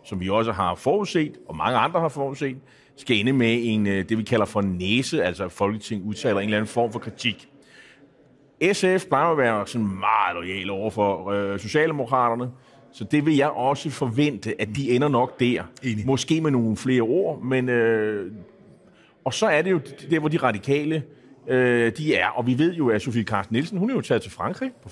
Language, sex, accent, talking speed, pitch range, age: Danish, male, native, 200 wpm, 115-150 Hz, 30-49